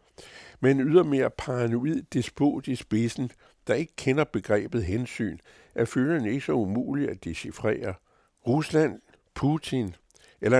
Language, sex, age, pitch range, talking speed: Danish, male, 60-79, 100-130 Hz, 125 wpm